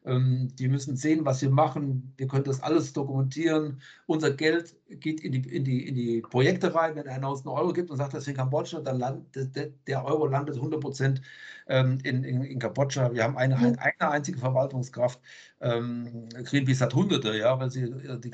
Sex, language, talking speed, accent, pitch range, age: male, German, 190 wpm, German, 125-145 Hz, 60-79